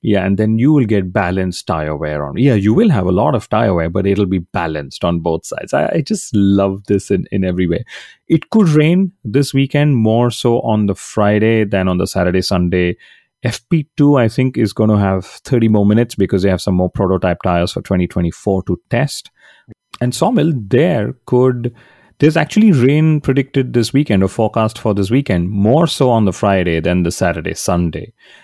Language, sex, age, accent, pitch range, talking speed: English, male, 30-49, Indian, 95-120 Hz, 200 wpm